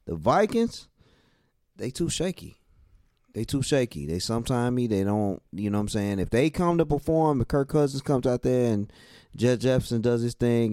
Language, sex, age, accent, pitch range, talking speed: English, male, 20-39, American, 95-125 Hz, 190 wpm